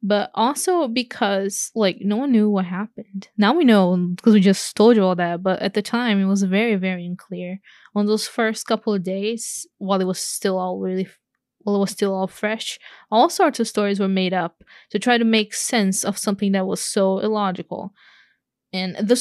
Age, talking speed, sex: 10-29, 205 wpm, female